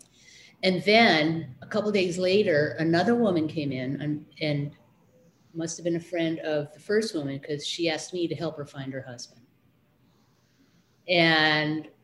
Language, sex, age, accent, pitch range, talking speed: English, female, 30-49, American, 145-180 Hz, 160 wpm